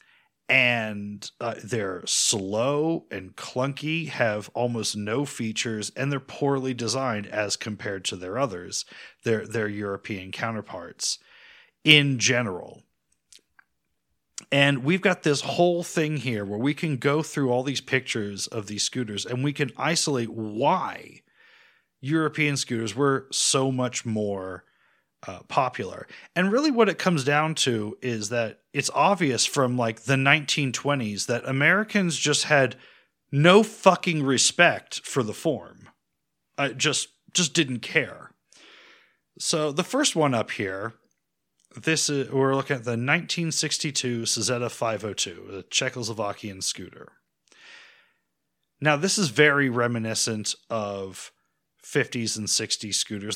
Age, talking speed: 30-49, 130 wpm